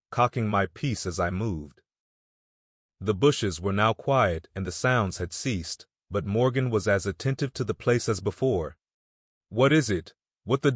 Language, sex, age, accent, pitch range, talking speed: English, male, 30-49, American, 90-115 Hz, 175 wpm